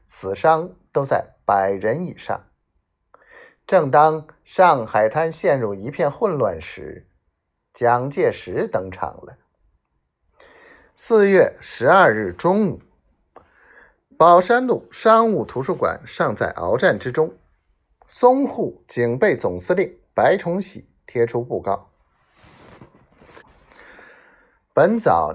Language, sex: Chinese, male